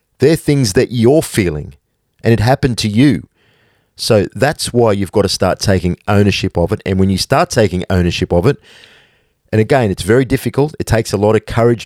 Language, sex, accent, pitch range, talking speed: English, male, Australian, 95-115 Hz, 200 wpm